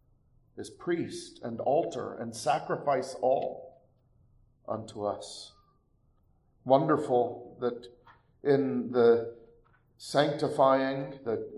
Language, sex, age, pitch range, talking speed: English, male, 40-59, 120-145 Hz, 80 wpm